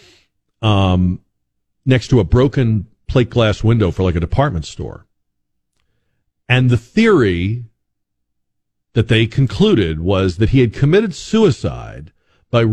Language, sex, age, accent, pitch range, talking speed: English, male, 50-69, American, 90-125 Hz, 125 wpm